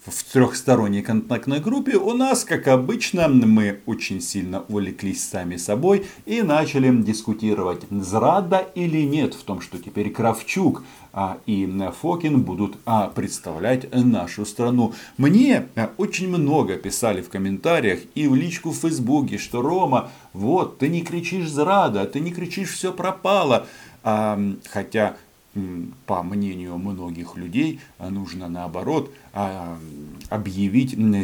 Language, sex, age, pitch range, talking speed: Russian, male, 40-59, 100-155 Hz, 120 wpm